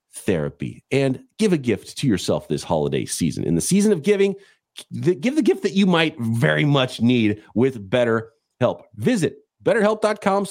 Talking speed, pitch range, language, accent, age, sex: 165 wpm, 110-175 Hz, English, American, 40-59, male